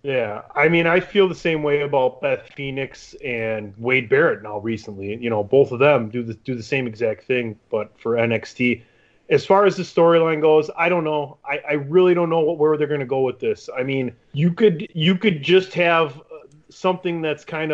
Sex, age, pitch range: male, 30-49, 120-155 Hz